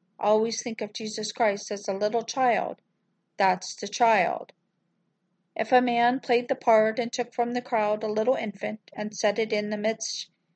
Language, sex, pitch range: English, female, 190-230 Hz